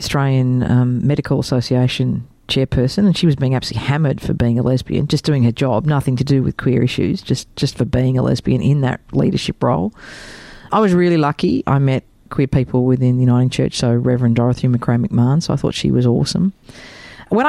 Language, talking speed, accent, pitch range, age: English, 200 wpm, Australian, 125-155 Hz, 40-59